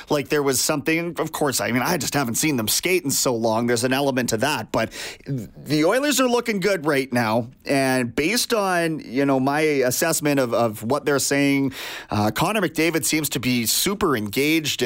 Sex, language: male, English